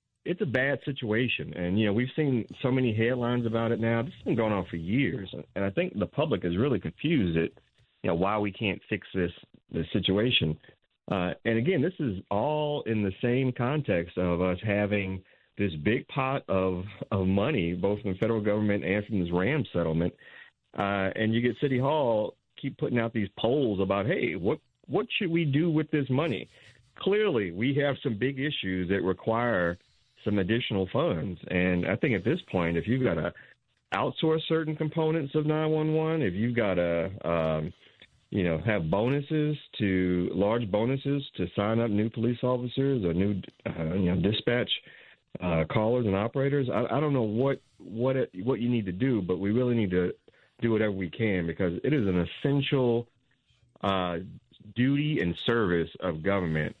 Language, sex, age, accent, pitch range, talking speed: English, male, 40-59, American, 95-130 Hz, 190 wpm